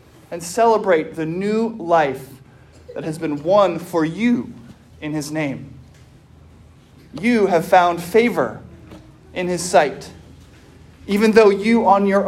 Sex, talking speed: male, 125 wpm